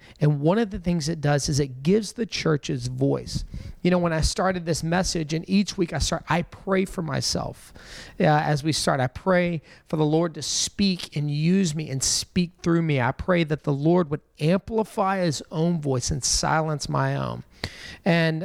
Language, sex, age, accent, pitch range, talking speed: English, male, 40-59, American, 155-185 Hz, 200 wpm